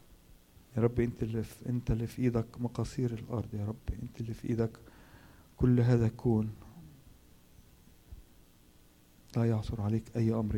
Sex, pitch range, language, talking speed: male, 100-120 Hz, Arabic, 140 wpm